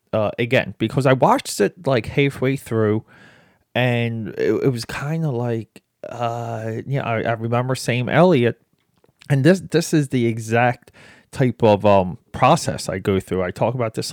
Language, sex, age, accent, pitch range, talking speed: English, male, 30-49, American, 110-140 Hz, 180 wpm